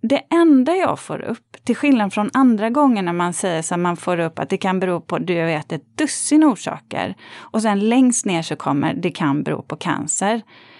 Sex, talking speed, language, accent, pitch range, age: female, 215 wpm, Swedish, native, 180-255 Hz, 30-49